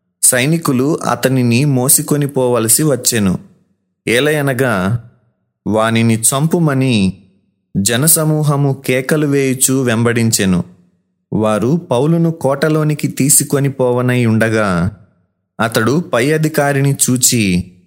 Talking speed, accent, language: 70 wpm, native, Telugu